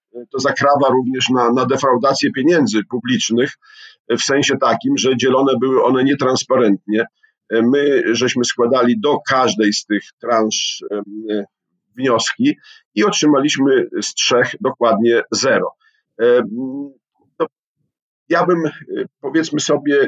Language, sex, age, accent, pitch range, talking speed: Polish, male, 50-69, native, 115-150 Hz, 105 wpm